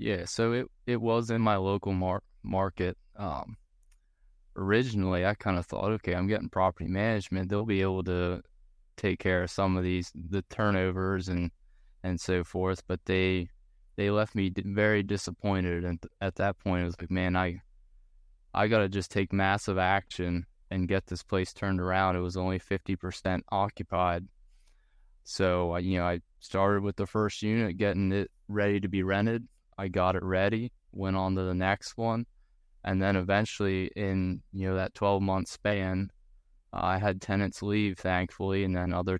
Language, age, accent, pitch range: English, 20-39, American, 90-100 Hz